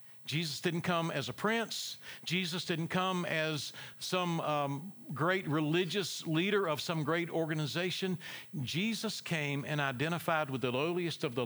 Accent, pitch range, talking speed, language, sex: American, 130-165 Hz, 145 wpm, English, male